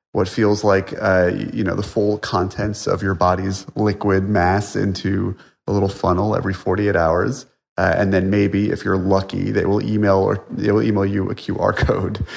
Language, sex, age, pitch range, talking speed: English, male, 30-49, 90-110 Hz, 190 wpm